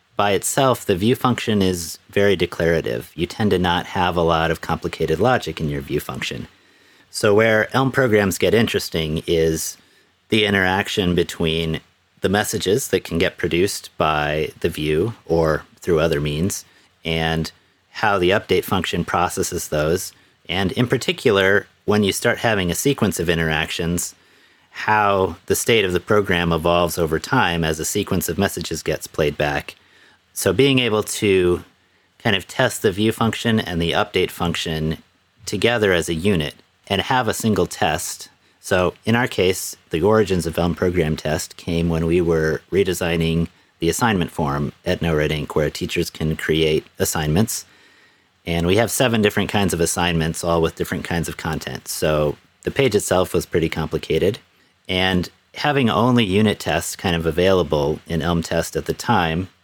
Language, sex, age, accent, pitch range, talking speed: English, male, 30-49, American, 80-100 Hz, 165 wpm